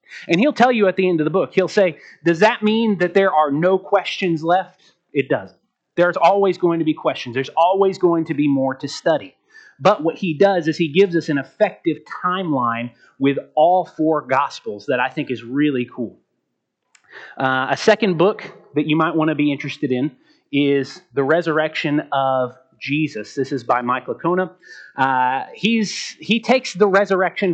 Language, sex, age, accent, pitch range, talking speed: English, male, 30-49, American, 135-180 Hz, 185 wpm